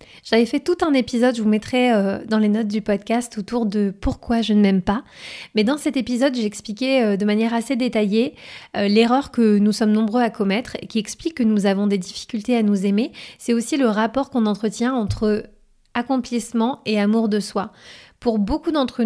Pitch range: 210-250 Hz